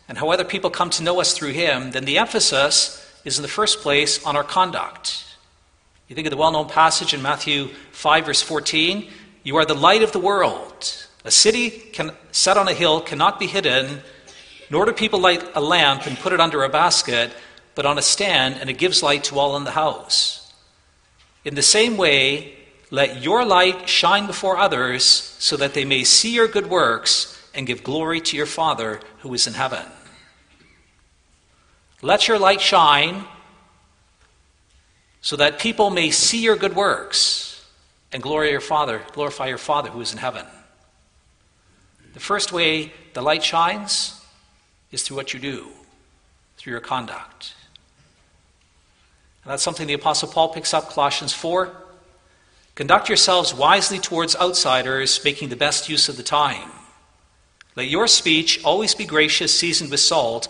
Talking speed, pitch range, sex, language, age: 165 wpm, 130-180 Hz, male, English, 40-59